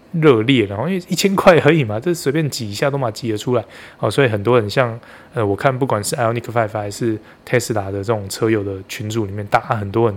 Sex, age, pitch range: male, 20-39, 105-130 Hz